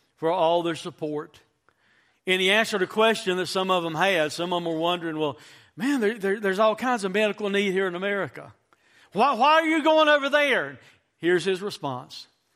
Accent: American